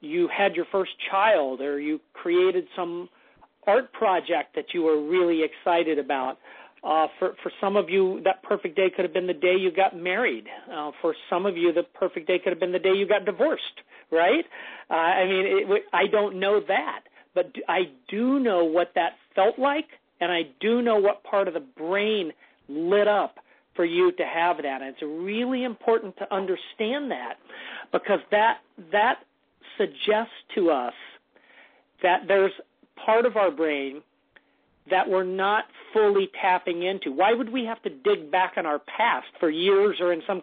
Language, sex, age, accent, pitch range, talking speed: English, male, 40-59, American, 180-230 Hz, 185 wpm